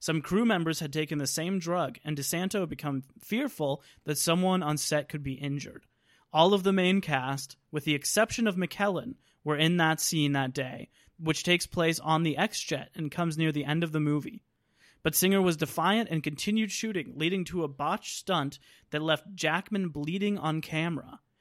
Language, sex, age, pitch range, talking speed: English, male, 30-49, 150-180 Hz, 190 wpm